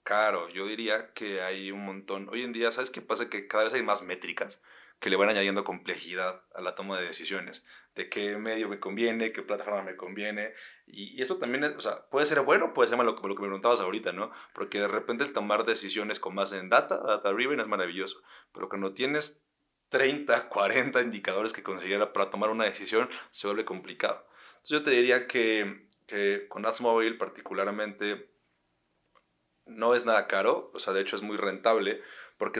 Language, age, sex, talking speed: Spanish, 30-49, male, 200 wpm